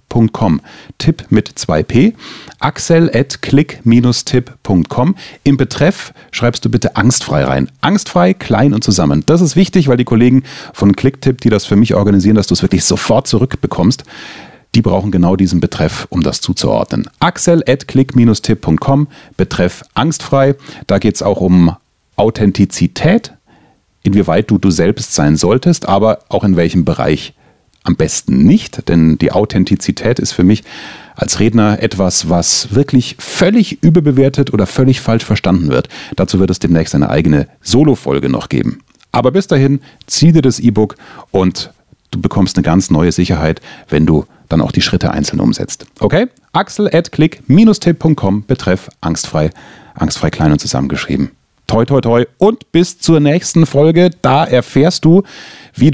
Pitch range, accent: 95-145 Hz, German